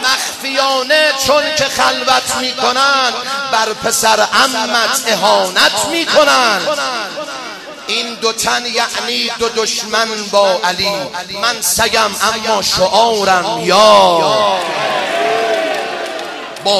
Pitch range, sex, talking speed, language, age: 190-245 Hz, male, 85 wpm, Persian, 30-49